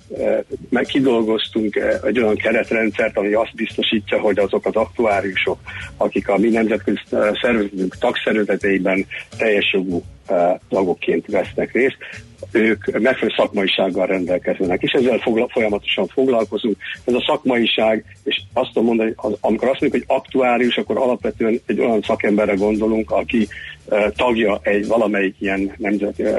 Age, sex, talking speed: 60-79, male, 120 wpm